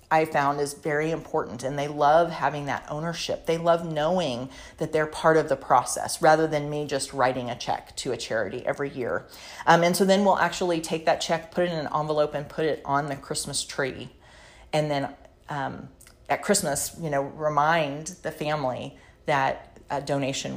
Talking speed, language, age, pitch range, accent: 195 wpm, English, 40-59, 145-185 Hz, American